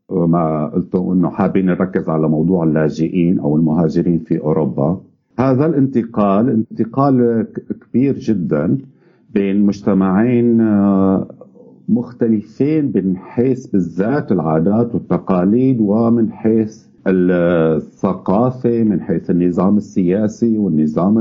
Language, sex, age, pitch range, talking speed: Arabic, male, 50-69, 90-120 Hz, 95 wpm